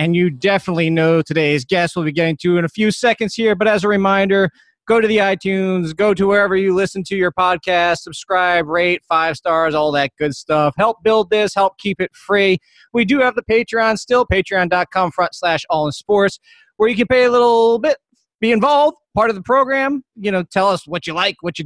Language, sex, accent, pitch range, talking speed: English, male, American, 165-215 Hz, 220 wpm